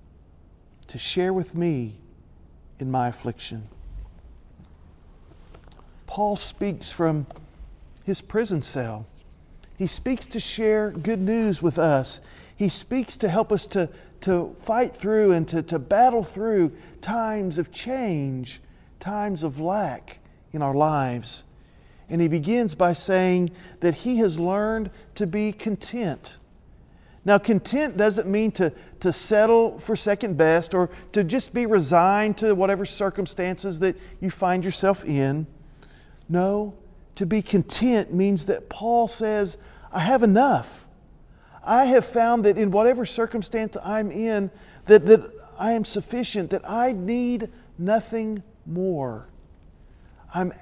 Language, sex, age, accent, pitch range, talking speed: English, male, 40-59, American, 160-215 Hz, 130 wpm